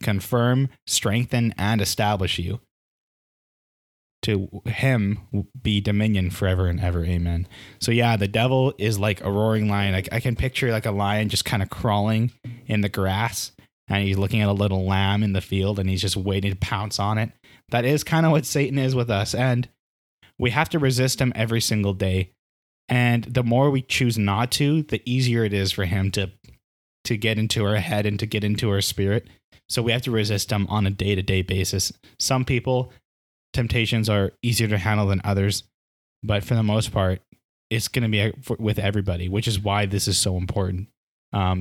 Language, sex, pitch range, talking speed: English, male, 100-120 Hz, 195 wpm